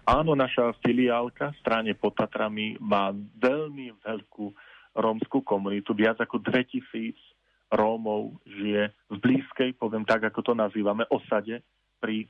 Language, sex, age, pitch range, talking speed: Slovak, male, 40-59, 105-120 Hz, 120 wpm